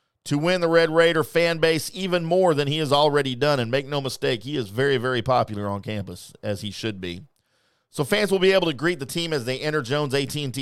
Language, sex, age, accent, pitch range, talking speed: English, male, 40-59, American, 115-150 Hz, 245 wpm